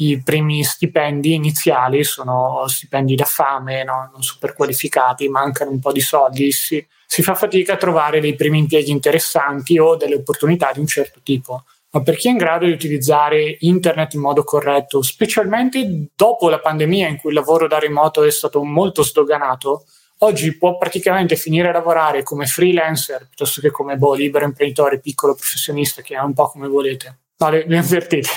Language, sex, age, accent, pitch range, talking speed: Italian, male, 20-39, native, 145-175 Hz, 175 wpm